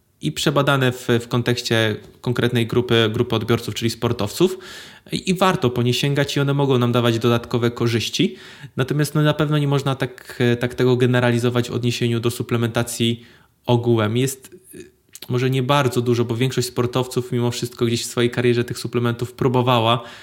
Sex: male